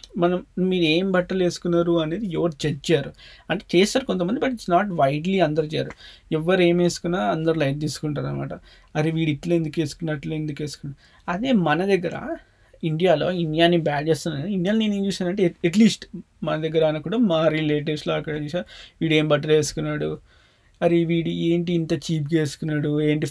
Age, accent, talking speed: 20-39, native, 160 wpm